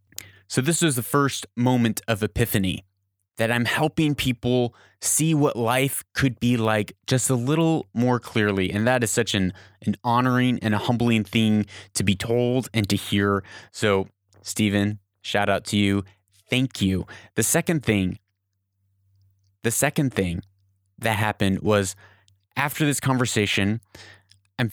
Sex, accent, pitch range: male, American, 100-125 Hz